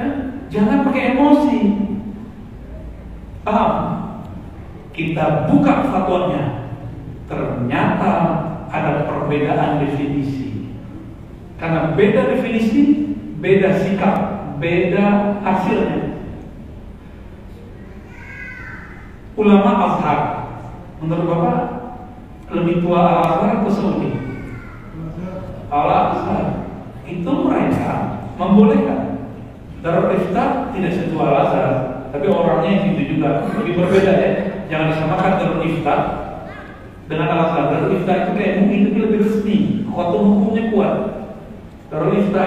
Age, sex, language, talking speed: 50-69, male, Indonesian, 90 wpm